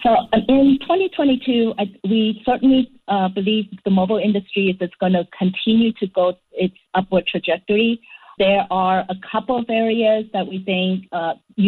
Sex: female